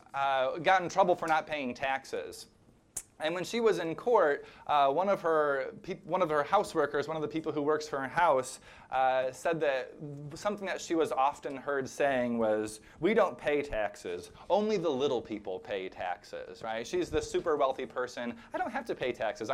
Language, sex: English, male